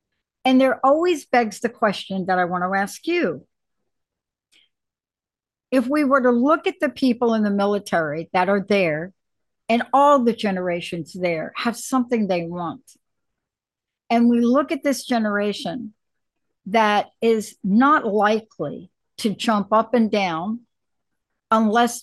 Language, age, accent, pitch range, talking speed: English, 60-79, American, 200-255 Hz, 140 wpm